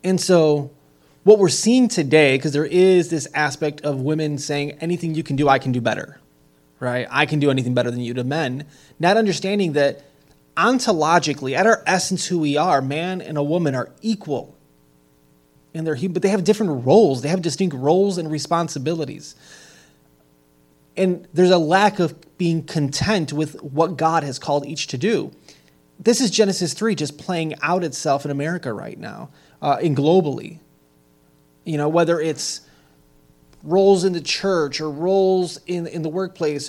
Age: 20-39